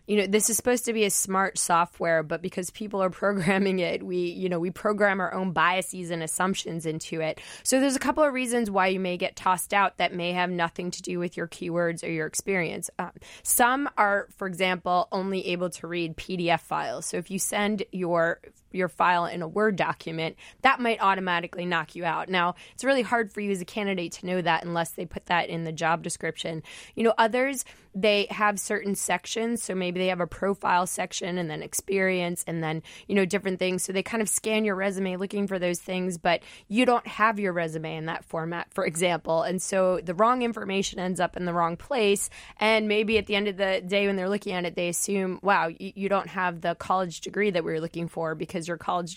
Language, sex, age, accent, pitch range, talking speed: English, female, 20-39, American, 175-205 Hz, 225 wpm